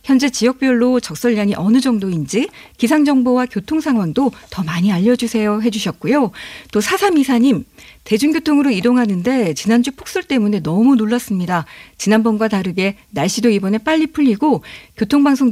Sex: female